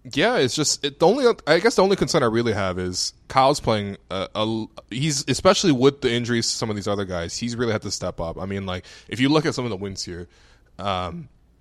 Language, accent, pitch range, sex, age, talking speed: English, American, 95-125 Hz, male, 20-39, 255 wpm